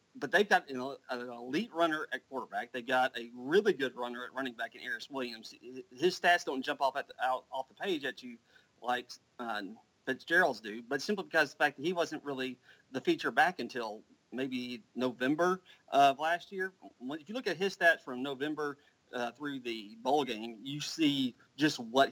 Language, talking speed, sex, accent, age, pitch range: English, 200 wpm, male, American, 40-59, 130-180 Hz